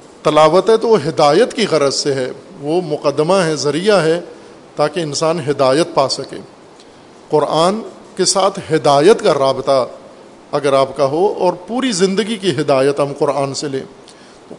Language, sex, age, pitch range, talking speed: Urdu, male, 50-69, 145-185 Hz, 160 wpm